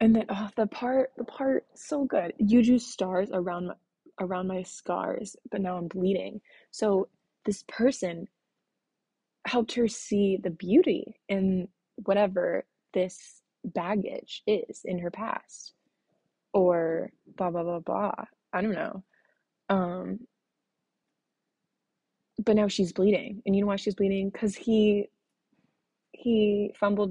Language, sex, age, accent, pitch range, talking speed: English, female, 20-39, American, 180-220 Hz, 135 wpm